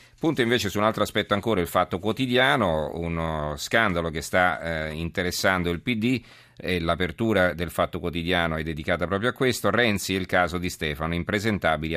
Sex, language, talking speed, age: male, Italian, 175 wpm, 40-59